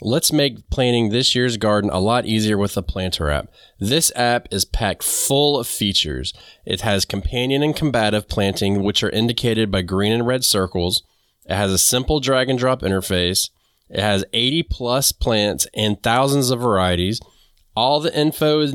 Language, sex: English, male